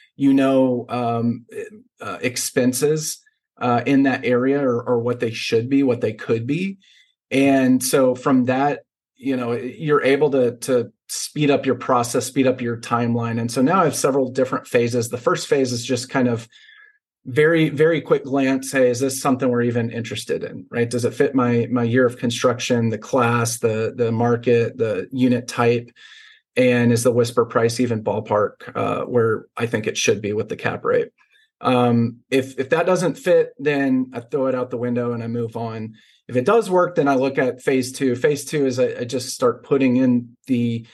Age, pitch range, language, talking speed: 30-49, 120-140 Hz, English, 200 wpm